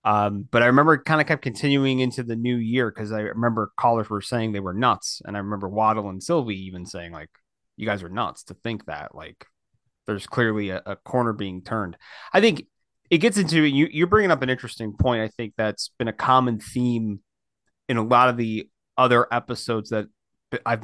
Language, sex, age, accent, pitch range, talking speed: English, male, 30-49, American, 100-120 Hz, 210 wpm